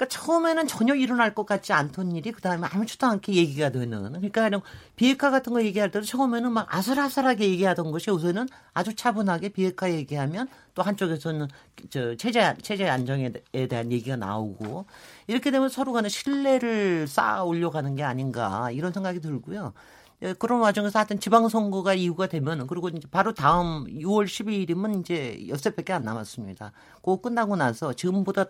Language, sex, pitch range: Korean, male, 140-200 Hz